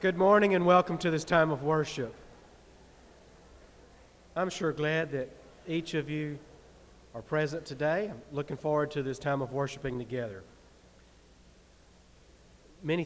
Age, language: 40-59, English